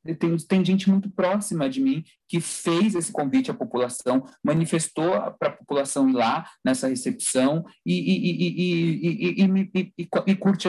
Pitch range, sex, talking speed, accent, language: 145-210 Hz, male, 150 wpm, Brazilian, Portuguese